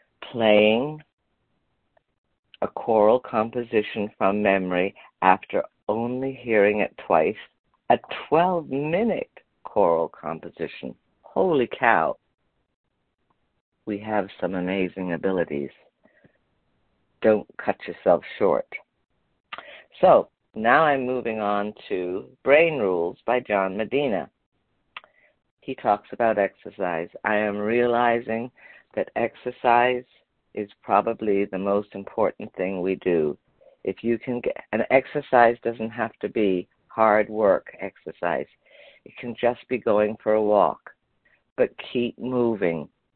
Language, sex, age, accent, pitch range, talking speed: English, female, 50-69, American, 95-120 Hz, 110 wpm